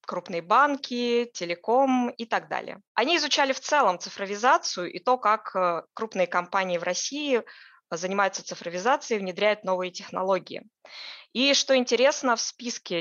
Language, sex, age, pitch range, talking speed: Russian, female, 20-39, 180-240 Hz, 135 wpm